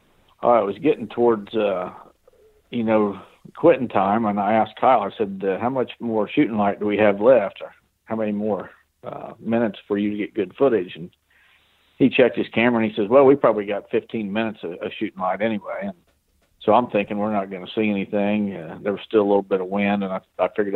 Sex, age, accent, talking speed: male, 50-69, American, 230 wpm